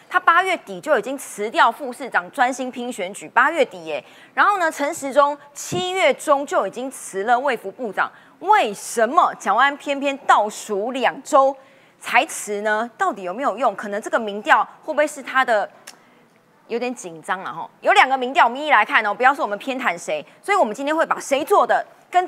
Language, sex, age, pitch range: Chinese, female, 30-49, 220-305 Hz